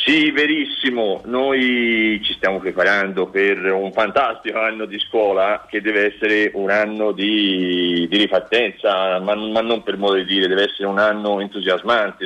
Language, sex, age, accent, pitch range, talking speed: Italian, male, 40-59, native, 95-155 Hz, 155 wpm